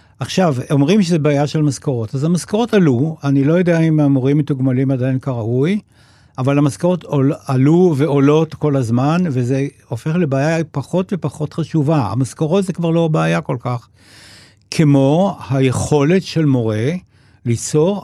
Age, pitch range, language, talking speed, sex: 60-79, 120-160 Hz, Hebrew, 135 wpm, male